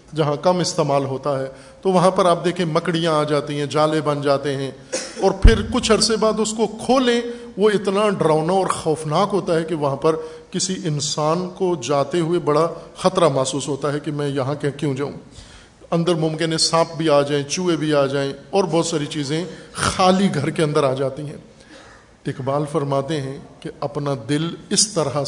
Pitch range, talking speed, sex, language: 145-195 Hz, 190 wpm, male, Urdu